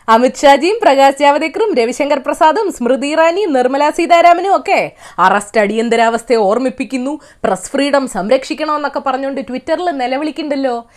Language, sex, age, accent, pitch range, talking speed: Malayalam, female, 20-39, native, 250-355 Hz, 110 wpm